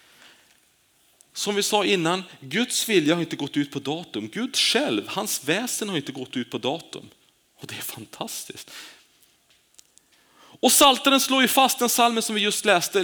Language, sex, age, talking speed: Swedish, male, 30-49, 170 wpm